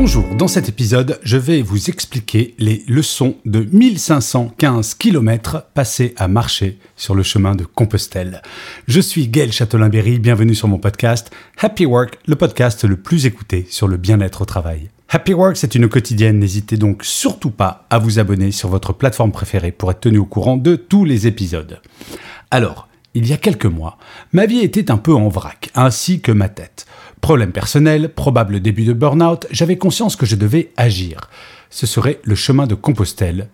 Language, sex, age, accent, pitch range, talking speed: French, male, 40-59, French, 100-150 Hz, 190 wpm